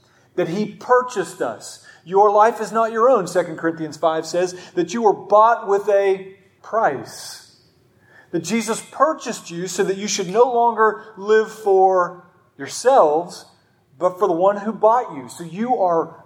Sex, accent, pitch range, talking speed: male, American, 155-200 Hz, 160 wpm